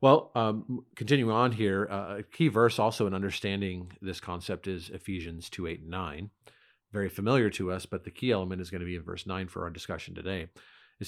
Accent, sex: American, male